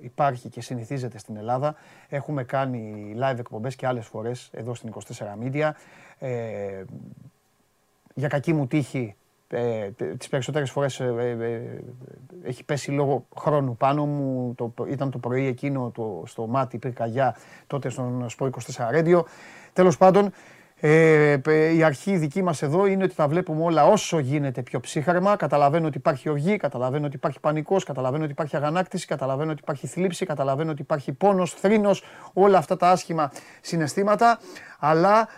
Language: Greek